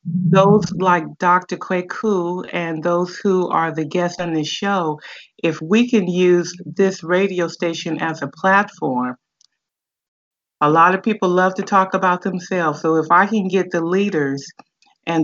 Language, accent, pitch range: English, American, 160-185 Hz